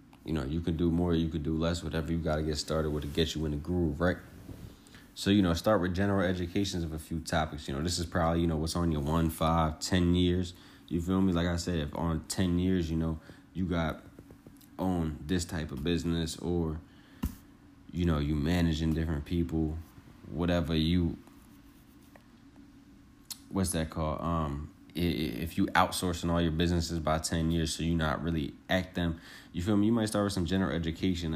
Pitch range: 80-90 Hz